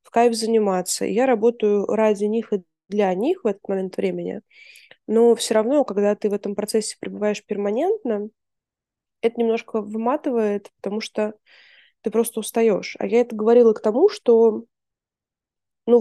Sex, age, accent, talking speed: female, 20-39, native, 150 wpm